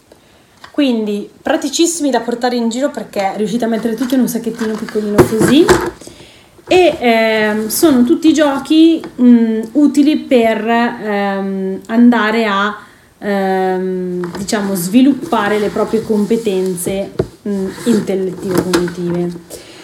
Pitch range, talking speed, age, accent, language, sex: 195-260 Hz, 105 wpm, 30-49, native, Italian, female